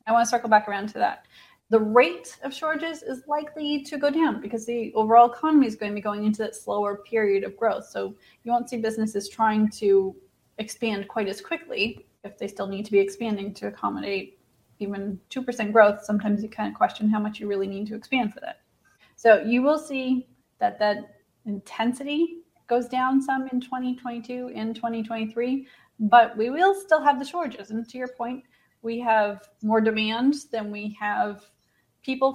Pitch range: 210-260 Hz